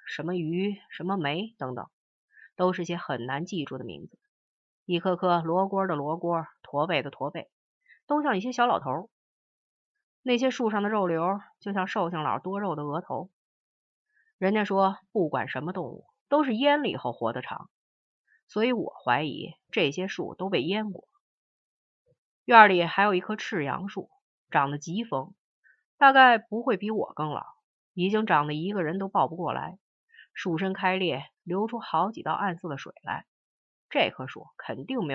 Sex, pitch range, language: female, 170-220 Hz, Chinese